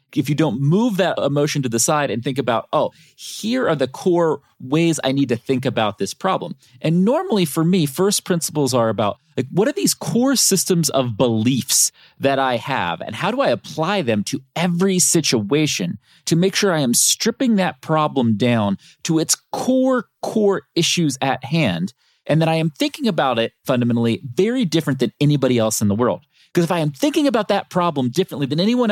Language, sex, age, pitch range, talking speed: English, male, 30-49, 120-180 Hz, 200 wpm